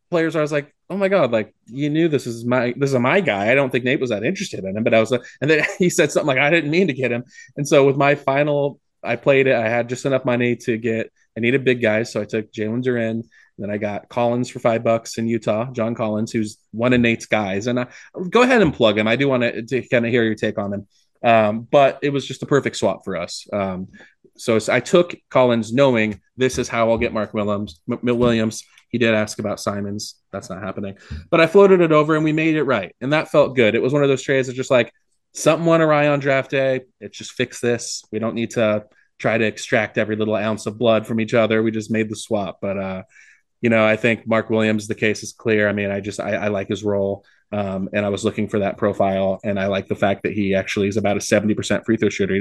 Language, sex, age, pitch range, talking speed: English, male, 20-39, 105-130 Hz, 265 wpm